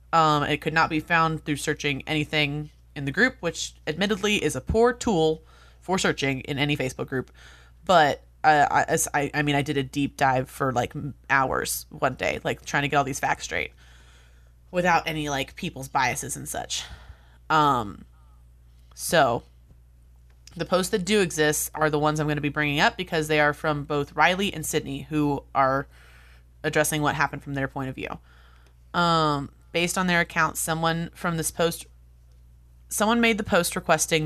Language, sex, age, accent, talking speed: English, female, 20-39, American, 180 wpm